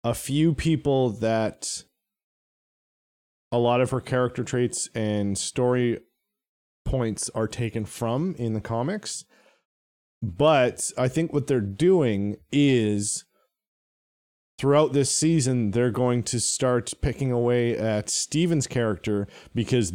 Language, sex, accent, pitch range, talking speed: English, male, American, 105-135 Hz, 115 wpm